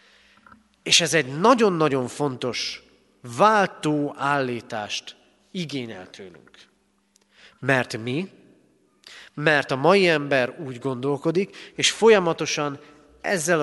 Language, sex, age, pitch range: Hungarian, male, 40-59, 125-170 Hz